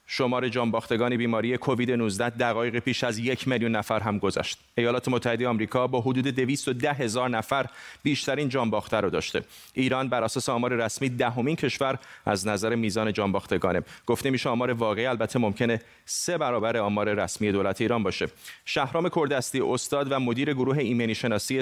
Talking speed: 160 wpm